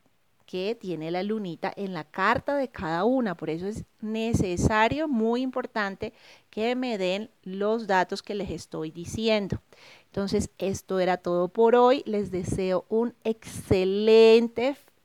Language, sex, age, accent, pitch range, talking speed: Spanish, female, 30-49, Colombian, 185-235 Hz, 140 wpm